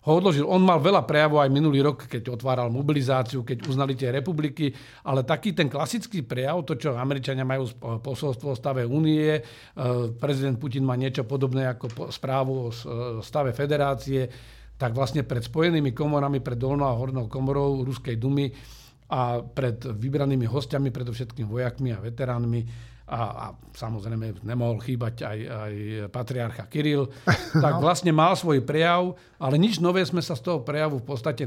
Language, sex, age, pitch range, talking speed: Slovak, male, 50-69, 125-145 Hz, 155 wpm